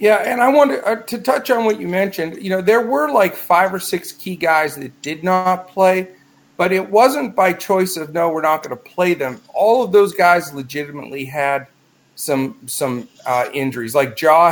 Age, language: 40-59, English